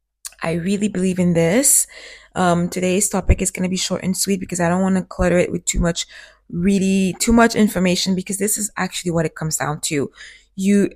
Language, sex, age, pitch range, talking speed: English, female, 20-39, 180-220 Hz, 215 wpm